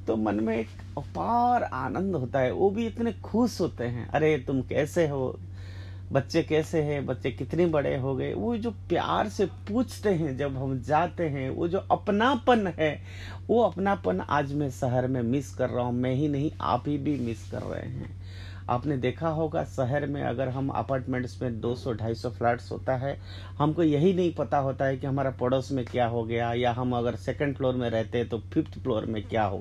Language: Hindi